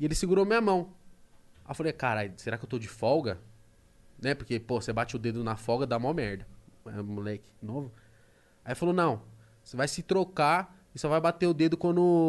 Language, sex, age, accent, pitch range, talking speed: Portuguese, male, 20-39, Brazilian, 115-190 Hz, 215 wpm